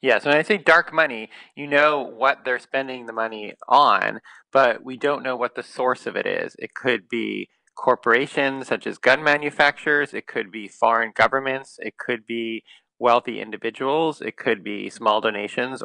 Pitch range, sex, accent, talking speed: 115-135 Hz, male, American, 180 wpm